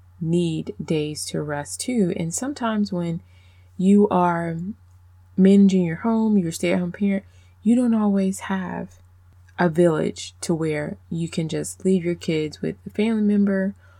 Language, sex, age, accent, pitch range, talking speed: English, female, 20-39, American, 140-185 Hz, 145 wpm